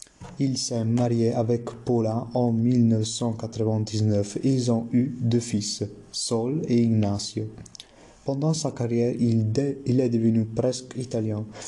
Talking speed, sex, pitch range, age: 125 wpm, male, 110-125 Hz, 30-49